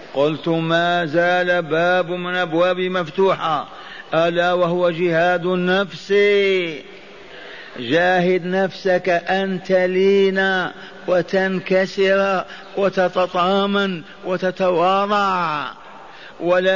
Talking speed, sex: 70 wpm, male